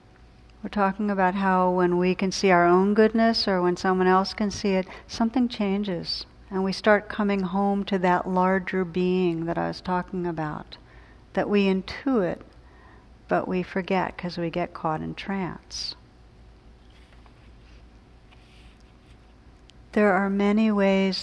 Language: English